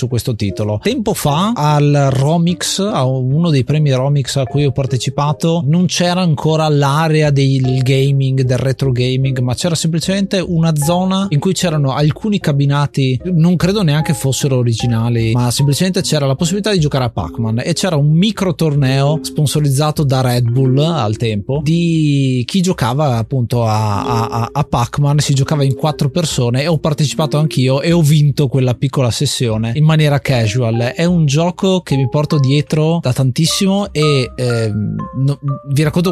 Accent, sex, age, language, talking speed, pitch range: native, male, 30-49, Italian, 165 wpm, 130-160 Hz